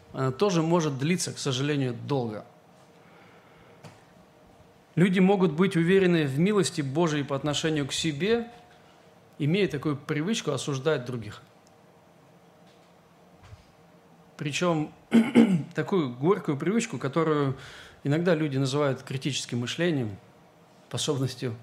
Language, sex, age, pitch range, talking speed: Russian, male, 40-59, 135-160 Hz, 95 wpm